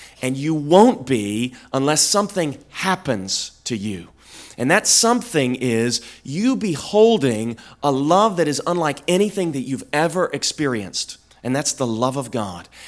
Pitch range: 125-205 Hz